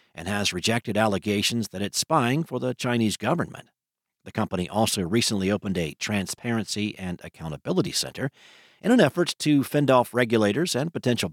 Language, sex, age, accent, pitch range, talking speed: English, male, 50-69, American, 105-160 Hz, 160 wpm